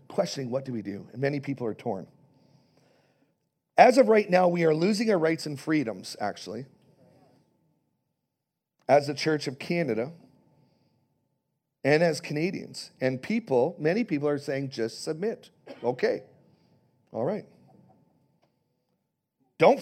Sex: male